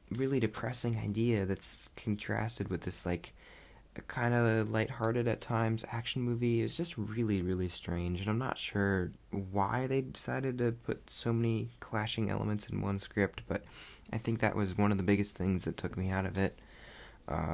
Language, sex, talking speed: English, male, 180 wpm